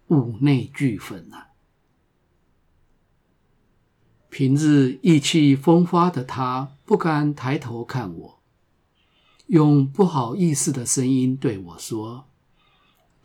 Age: 50-69